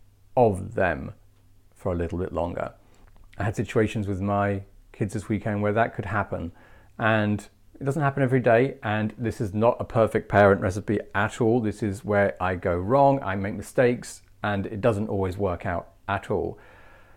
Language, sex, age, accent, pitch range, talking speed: English, male, 40-59, British, 95-115 Hz, 180 wpm